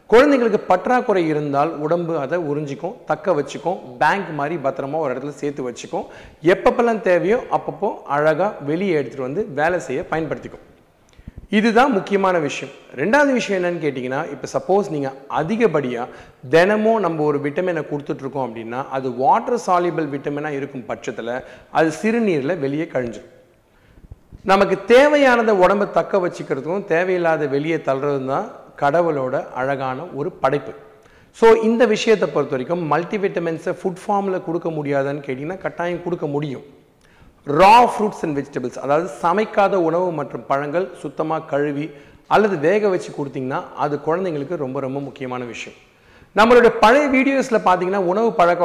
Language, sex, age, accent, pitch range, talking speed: Tamil, male, 40-59, native, 140-185 Hz, 130 wpm